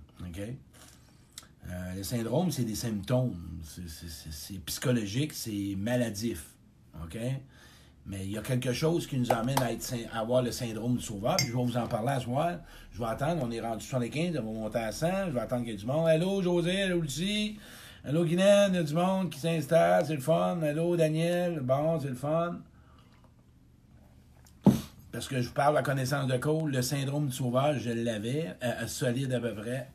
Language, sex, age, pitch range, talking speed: French, male, 60-79, 105-145 Hz, 210 wpm